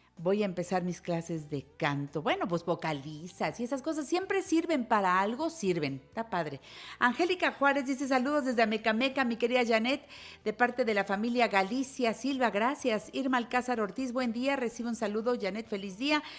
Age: 50-69